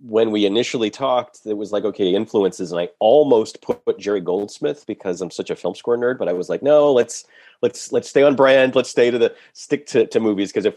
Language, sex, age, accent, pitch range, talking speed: English, male, 40-59, American, 95-135 Hz, 240 wpm